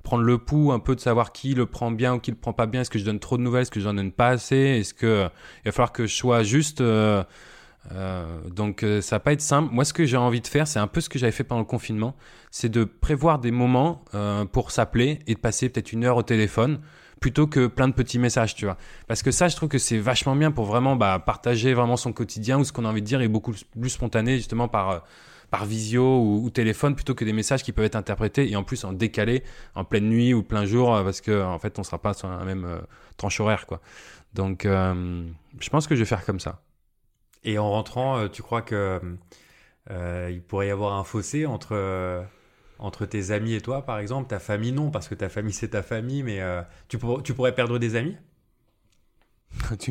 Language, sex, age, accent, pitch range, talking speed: French, male, 20-39, French, 105-130 Hz, 250 wpm